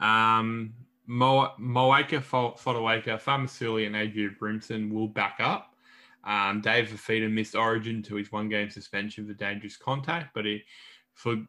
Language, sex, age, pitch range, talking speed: English, male, 10-29, 105-135 Hz, 135 wpm